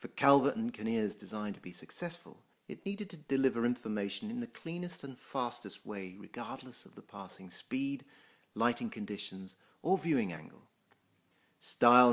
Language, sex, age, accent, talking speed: English, male, 40-59, British, 150 wpm